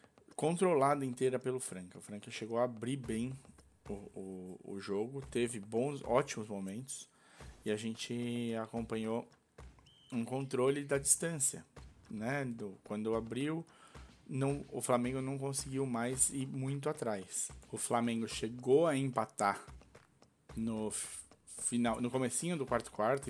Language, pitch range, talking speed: Portuguese, 115-150 Hz, 120 wpm